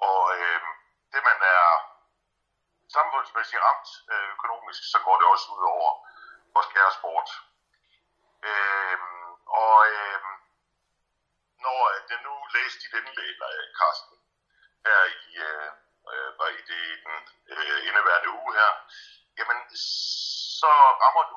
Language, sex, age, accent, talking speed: Danish, male, 60-79, native, 120 wpm